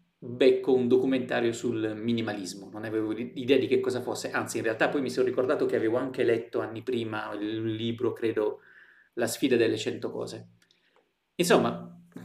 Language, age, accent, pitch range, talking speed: Italian, 30-49, native, 115-130 Hz, 165 wpm